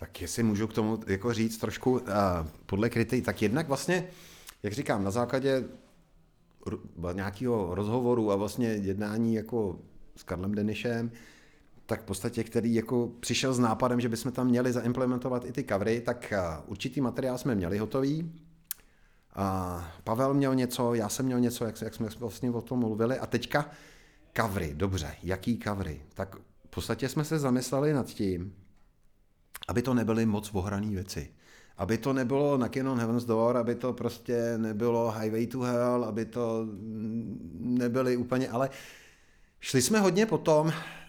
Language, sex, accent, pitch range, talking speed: Czech, male, native, 105-130 Hz, 155 wpm